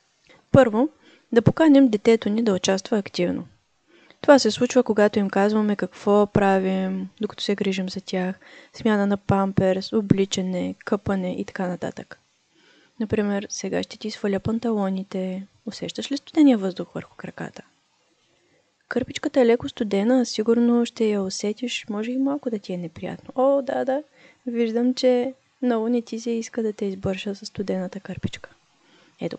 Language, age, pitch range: Bulgarian, 20-39, 195-255 Hz